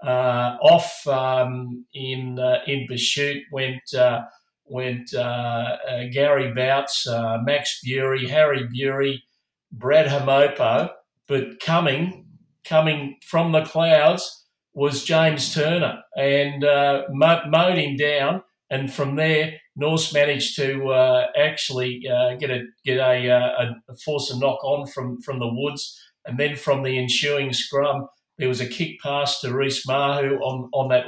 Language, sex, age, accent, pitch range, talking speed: English, male, 50-69, Australian, 125-145 Hz, 145 wpm